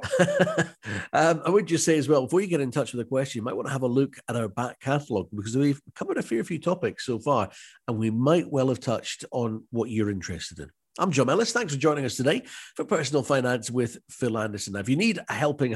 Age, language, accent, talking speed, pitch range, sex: 50-69, English, British, 250 wpm, 110-145 Hz, male